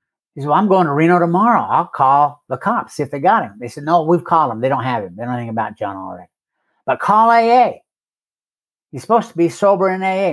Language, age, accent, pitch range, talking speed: English, 60-79, American, 145-210 Hz, 250 wpm